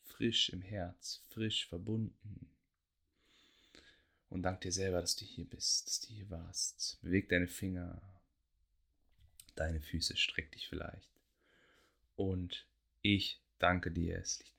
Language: German